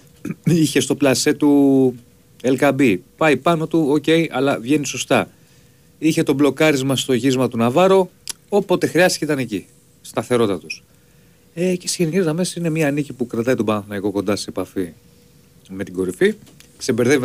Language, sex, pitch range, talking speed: Greek, male, 105-150 Hz, 155 wpm